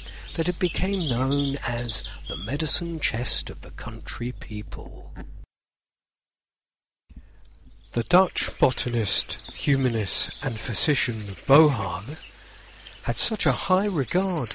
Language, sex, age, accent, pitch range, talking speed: English, male, 50-69, British, 100-140 Hz, 100 wpm